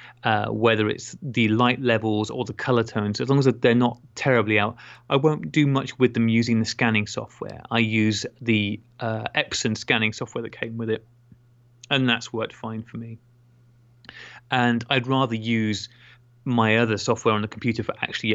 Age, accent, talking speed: 20-39, British, 185 wpm